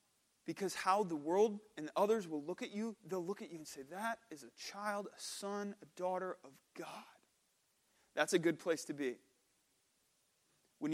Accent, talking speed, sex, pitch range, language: American, 180 wpm, male, 150-195 Hz, English